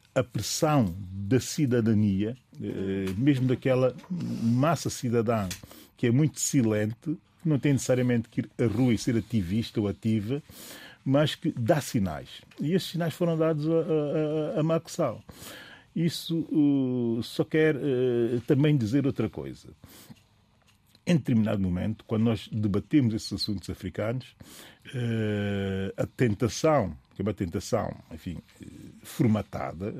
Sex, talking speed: male, 130 wpm